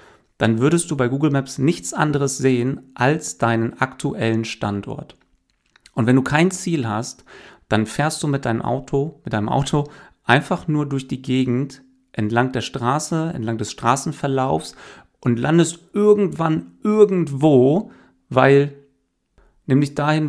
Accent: German